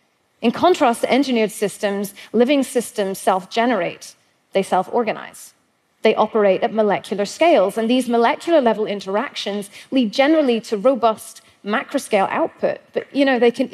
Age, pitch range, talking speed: 30-49, 205-285 Hz, 130 wpm